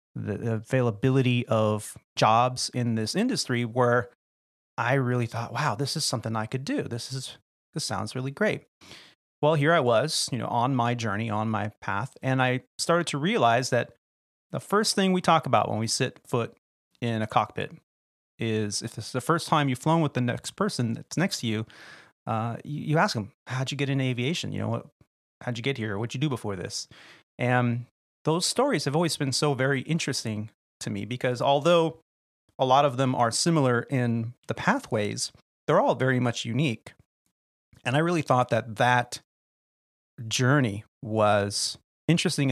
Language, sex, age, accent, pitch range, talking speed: English, male, 30-49, American, 115-140 Hz, 185 wpm